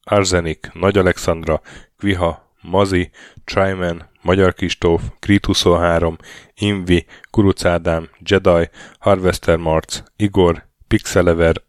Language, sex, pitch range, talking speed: Hungarian, male, 85-100 Hz, 90 wpm